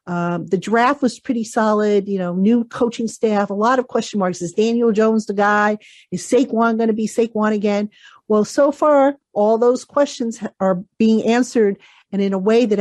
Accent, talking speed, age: American, 195 wpm, 50-69